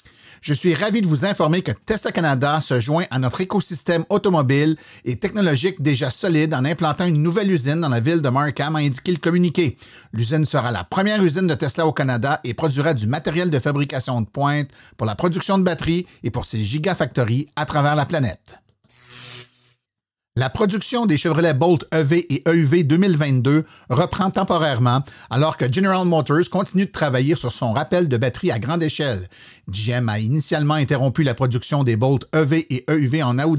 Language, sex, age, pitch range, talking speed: French, male, 50-69, 130-175 Hz, 180 wpm